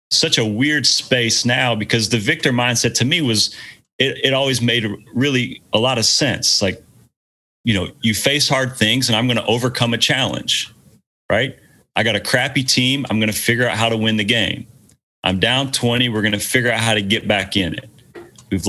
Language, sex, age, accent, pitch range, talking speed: English, male, 30-49, American, 105-130 Hz, 210 wpm